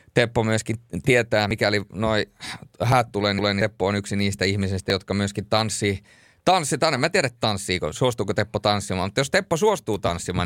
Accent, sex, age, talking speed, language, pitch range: native, male, 30-49, 165 wpm, Finnish, 95-120 Hz